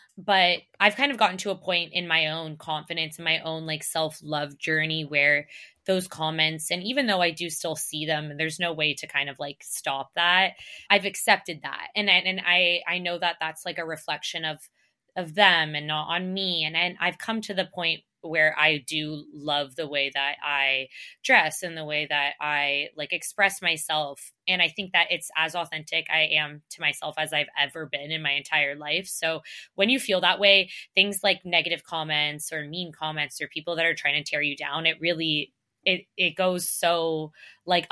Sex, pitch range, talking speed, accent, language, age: female, 155-190 Hz, 205 wpm, American, English, 20-39